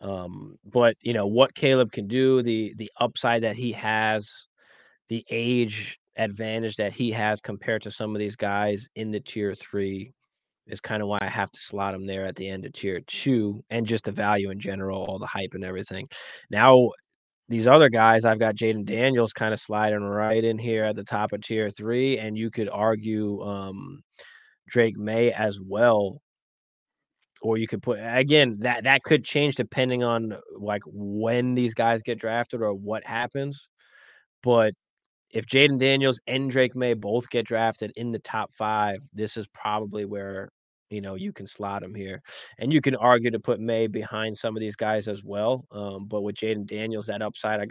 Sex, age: male, 20-39